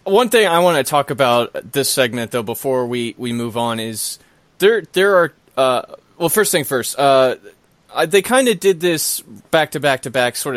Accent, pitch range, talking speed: American, 120-155 Hz, 180 wpm